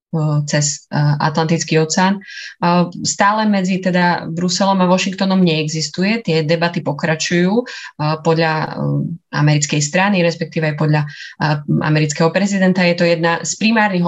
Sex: female